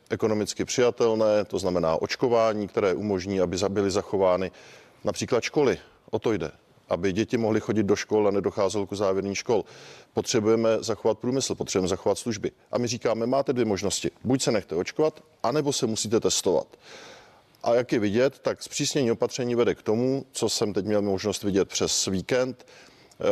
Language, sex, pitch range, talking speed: Czech, male, 105-130 Hz, 165 wpm